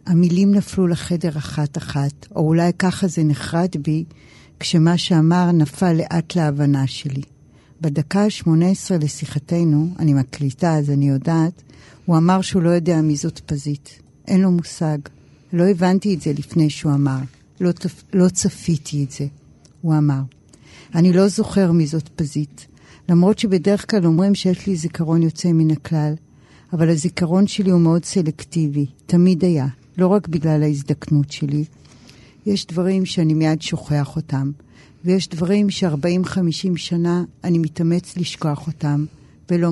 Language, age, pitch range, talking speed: Hebrew, 50-69, 150-175 Hz, 140 wpm